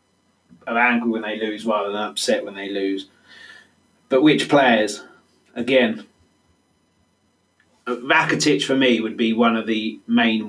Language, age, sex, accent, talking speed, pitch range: English, 20-39, male, British, 130 wpm, 110-125 Hz